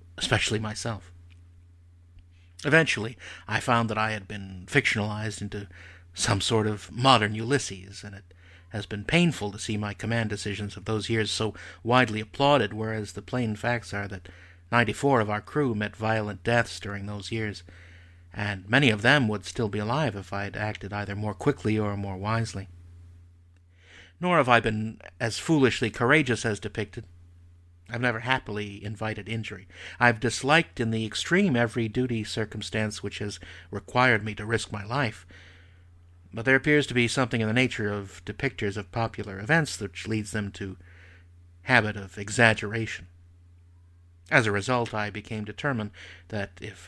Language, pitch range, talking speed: English, 90-115 Hz, 160 wpm